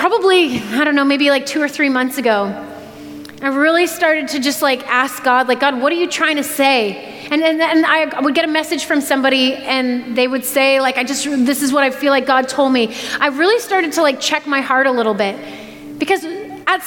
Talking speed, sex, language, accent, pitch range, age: 240 wpm, female, English, American, 265-325 Hz, 30-49